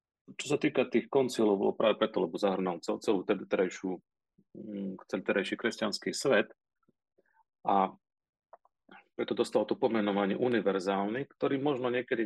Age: 40-59